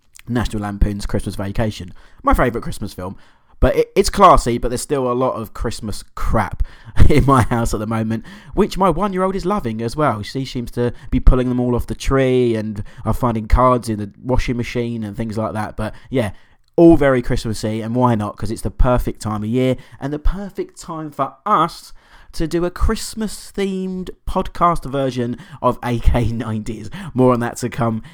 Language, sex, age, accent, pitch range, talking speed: English, male, 20-39, British, 110-130 Hz, 190 wpm